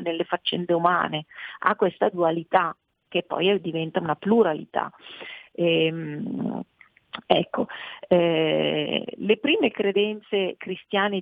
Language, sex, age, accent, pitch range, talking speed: Italian, female, 40-59, native, 170-215 Hz, 90 wpm